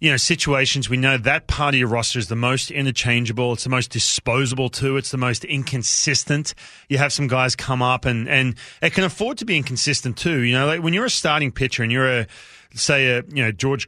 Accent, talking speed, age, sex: Australian, 235 wpm, 30-49, male